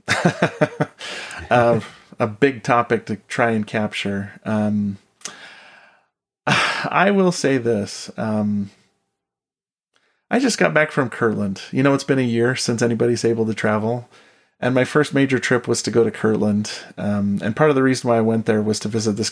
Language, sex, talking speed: English, male, 170 wpm